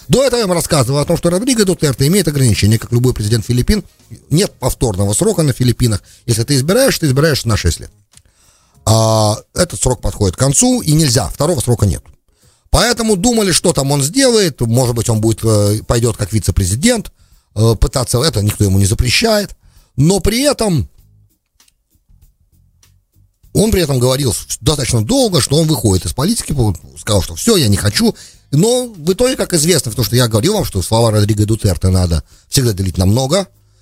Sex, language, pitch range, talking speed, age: male, English, 95-150 Hz, 175 wpm, 40-59